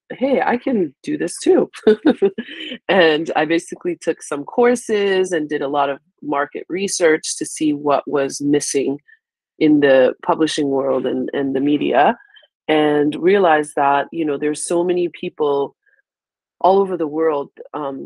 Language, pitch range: English, 145-175 Hz